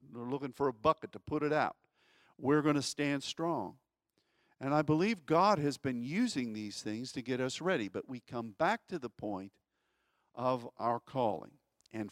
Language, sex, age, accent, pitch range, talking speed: English, male, 50-69, American, 120-165 Hz, 190 wpm